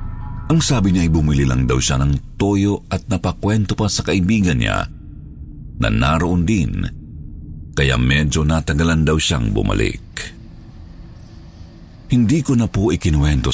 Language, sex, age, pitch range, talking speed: Filipino, male, 50-69, 70-100 Hz, 135 wpm